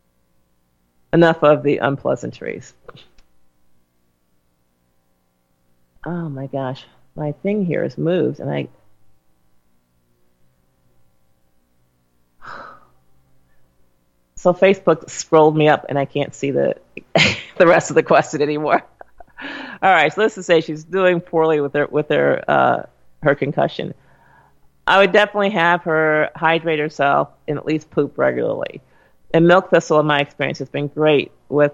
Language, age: English, 40-59